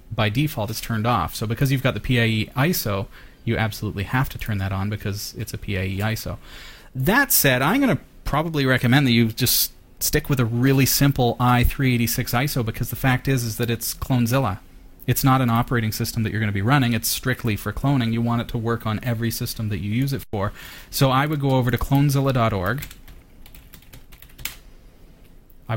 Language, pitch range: English, 110-130 Hz